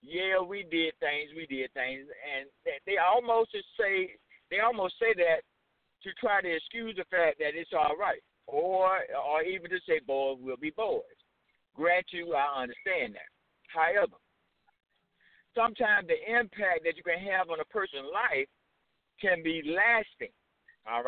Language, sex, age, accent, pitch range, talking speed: English, male, 60-79, American, 180-275 Hz, 160 wpm